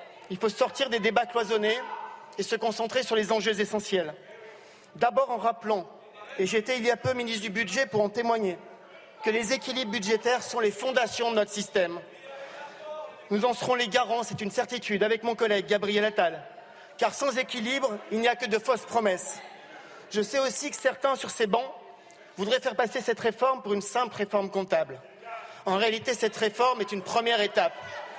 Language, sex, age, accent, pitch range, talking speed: French, male, 40-59, French, 210-250 Hz, 185 wpm